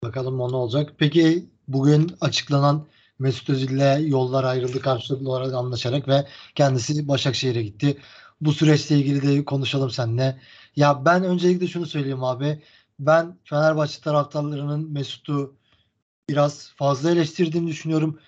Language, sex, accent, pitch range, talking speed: Turkish, male, native, 135-155 Hz, 120 wpm